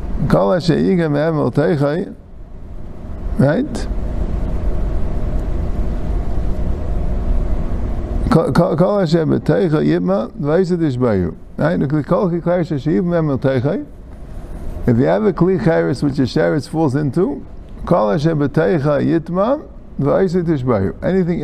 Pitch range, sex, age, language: 105-175 Hz, male, 50-69, English